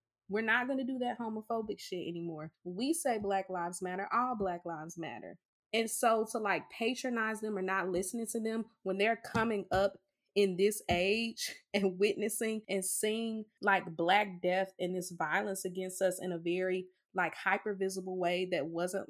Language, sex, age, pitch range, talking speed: English, female, 20-39, 180-235 Hz, 180 wpm